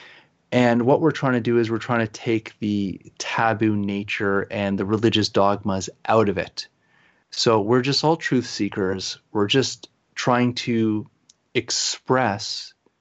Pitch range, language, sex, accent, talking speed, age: 105-120 Hz, English, male, American, 150 wpm, 30-49